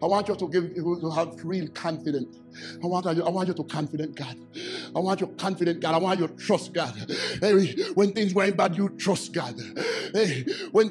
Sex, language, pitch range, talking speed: male, English, 215-340 Hz, 225 wpm